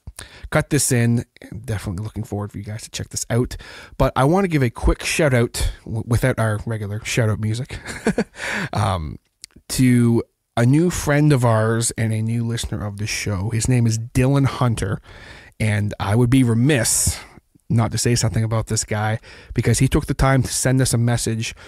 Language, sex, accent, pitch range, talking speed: English, male, American, 105-125 Hz, 195 wpm